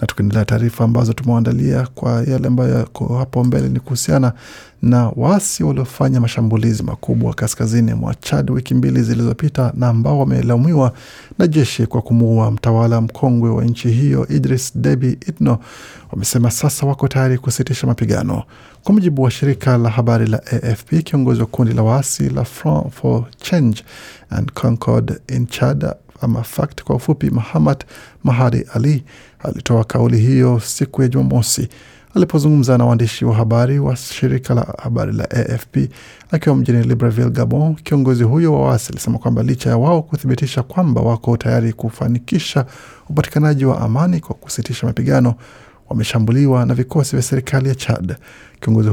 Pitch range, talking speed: 115-135 Hz, 145 wpm